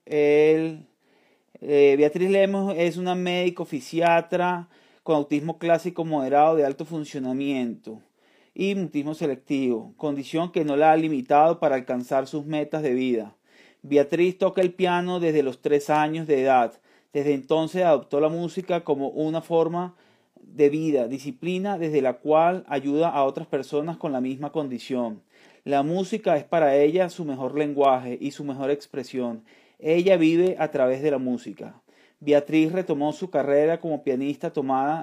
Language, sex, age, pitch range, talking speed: Spanish, male, 30-49, 140-160 Hz, 150 wpm